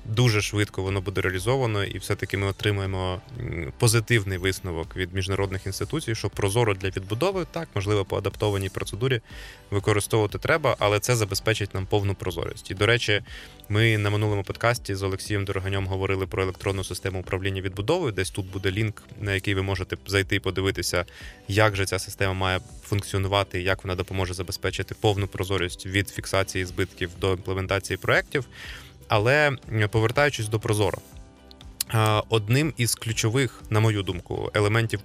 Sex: male